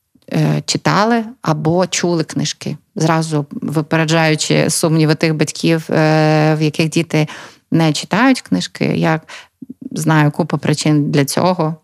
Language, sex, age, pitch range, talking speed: Ukrainian, female, 30-49, 150-170 Hz, 105 wpm